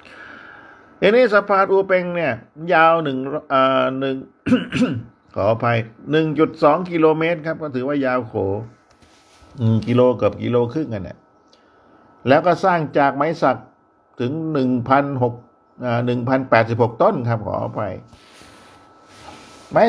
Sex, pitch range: male, 105-150 Hz